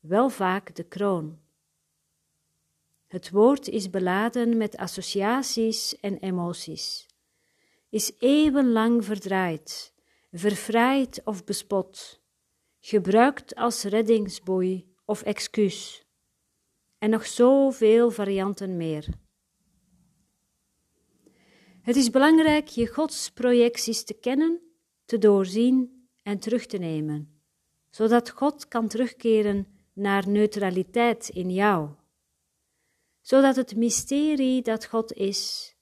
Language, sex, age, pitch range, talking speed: Dutch, female, 50-69, 185-235 Hz, 90 wpm